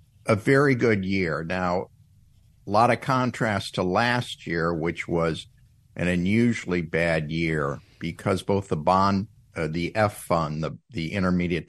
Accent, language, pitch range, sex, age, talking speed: American, English, 80-110 Hz, male, 60-79, 150 wpm